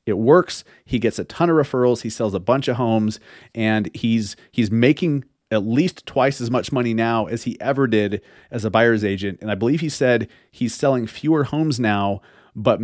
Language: English